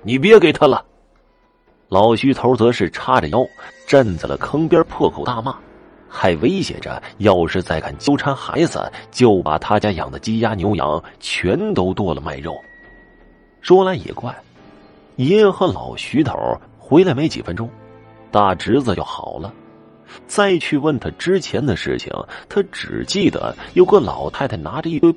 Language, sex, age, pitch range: Chinese, male, 30-49, 90-145 Hz